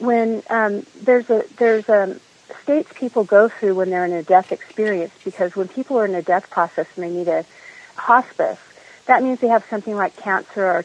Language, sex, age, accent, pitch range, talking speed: English, female, 40-59, American, 185-235 Hz, 205 wpm